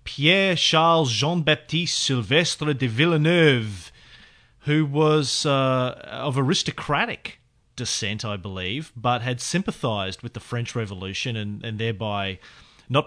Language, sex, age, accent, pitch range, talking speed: English, male, 30-49, Australian, 115-150 Hz, 100 wpm